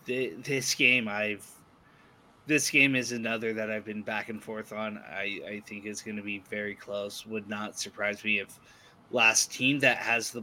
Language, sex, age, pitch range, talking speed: English, male, 20-39, 105-120 Hz, 190 wpm